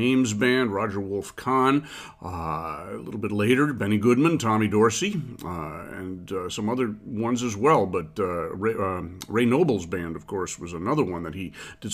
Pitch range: 95-130 Hz